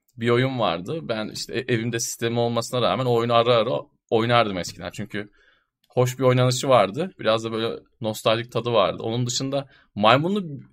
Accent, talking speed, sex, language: native, 155 wpm, male, Turkish